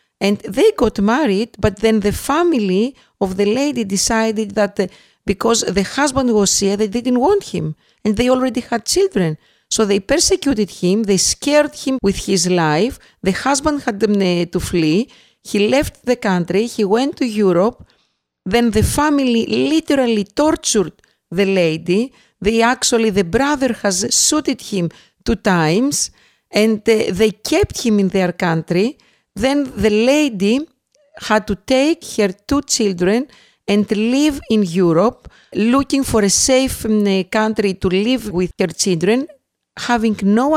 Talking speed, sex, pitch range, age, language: 145 wpm, female, 195-255 Hz, 50-69, English